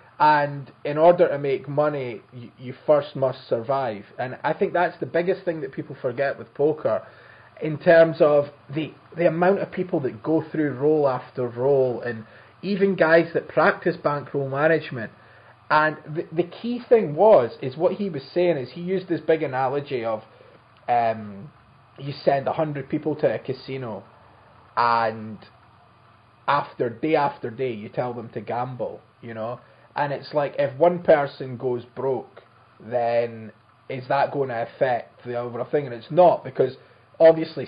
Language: English